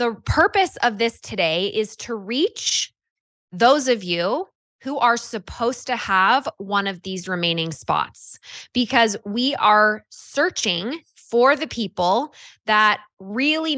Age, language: 20-39, English